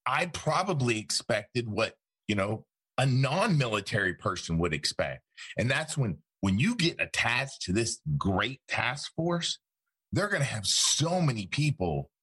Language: English